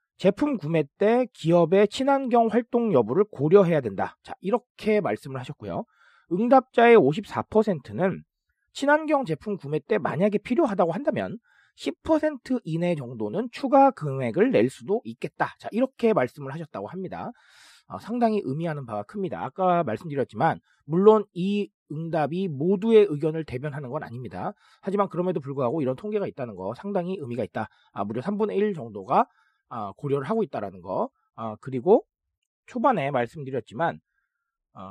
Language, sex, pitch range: Korean, male, 150-230 Hz